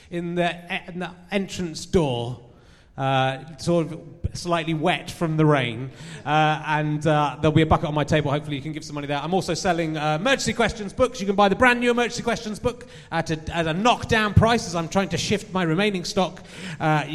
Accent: British